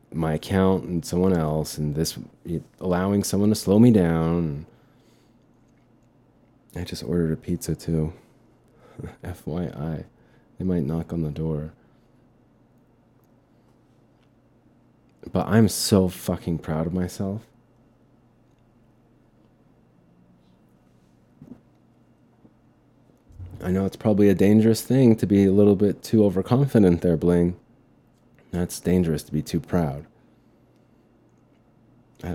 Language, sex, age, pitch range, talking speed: English, male, 30-49, 85-115 Hz, 105 wpm